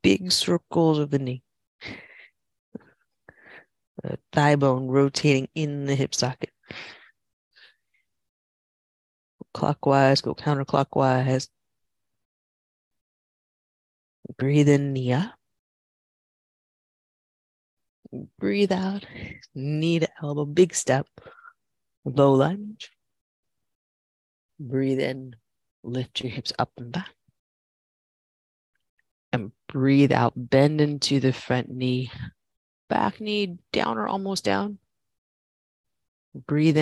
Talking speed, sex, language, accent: 80 wpm, female, English, American